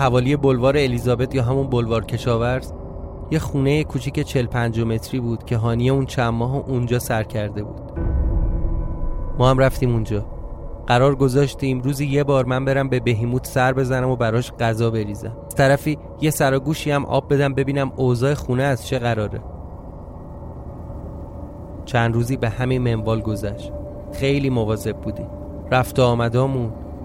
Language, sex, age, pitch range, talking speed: Persian, male, 30-49, 115-135 Hz, 145 wpm